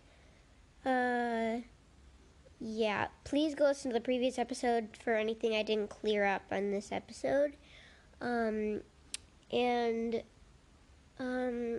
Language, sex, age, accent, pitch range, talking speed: English, female, 10-29, American, 210-270 Hz, 105 wpm